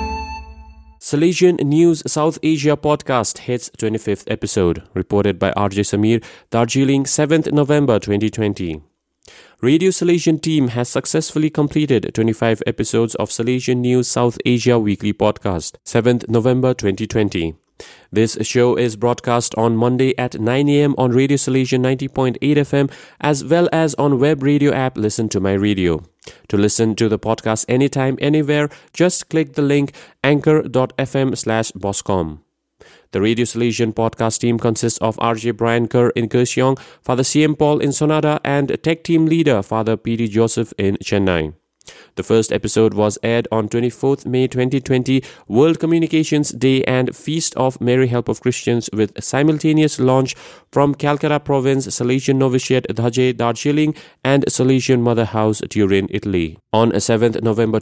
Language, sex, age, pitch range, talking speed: English, male, 30-49, 110-140 Hz, 145 wpm